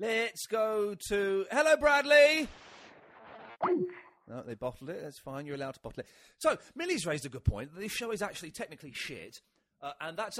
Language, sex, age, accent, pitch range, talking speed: English, male, 40-59, British, 125-180 Hz, 175 wpm